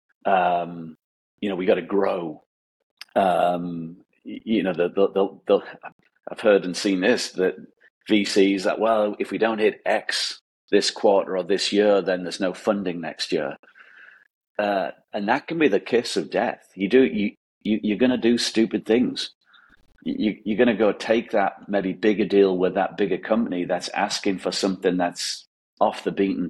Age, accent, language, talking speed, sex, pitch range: 40-59, British, English, 180 wpm, male, 90-105 Hz